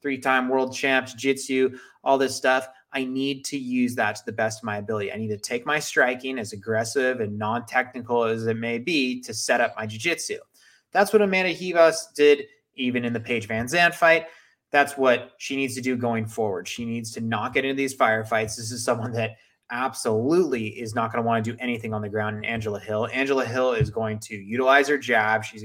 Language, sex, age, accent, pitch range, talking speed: English, male, 20-39, American, 110-130 Hz, 215 wpm